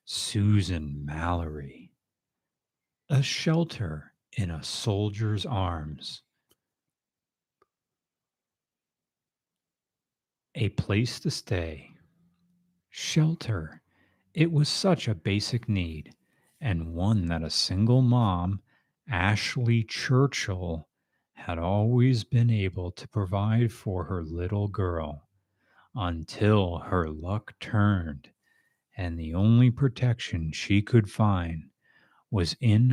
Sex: male